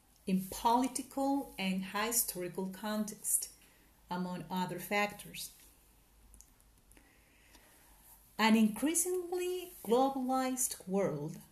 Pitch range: 170-245 Hz